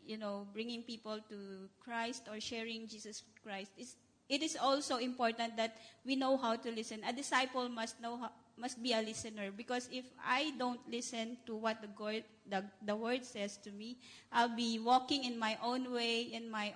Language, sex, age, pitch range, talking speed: English, female, 20-39, 210-245 Hz, 195 wpm